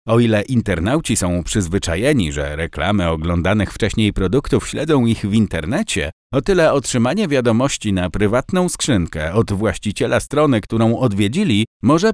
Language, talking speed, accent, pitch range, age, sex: Polish, 135 wpm, native, 95-145 Hz, 50-69, male